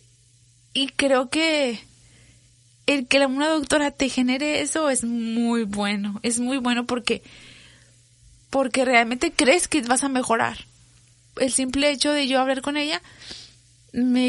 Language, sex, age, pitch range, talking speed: Spanish, female, 20-39, 205-265 Hz, 145 wpm